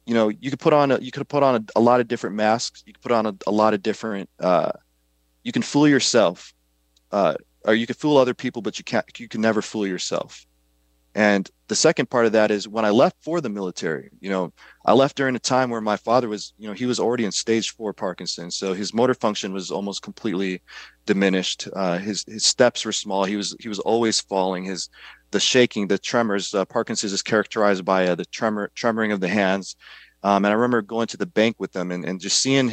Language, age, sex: English, 30-49, male